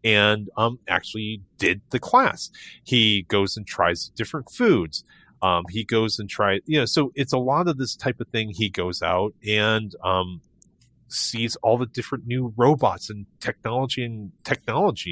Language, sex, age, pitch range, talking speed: English, male, 30-49, 95-125 Hz, 170 wpm